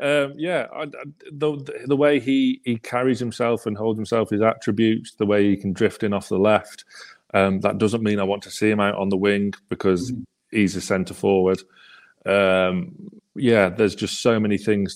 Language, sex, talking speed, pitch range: English, male, 195 wpm, 100-140 Hz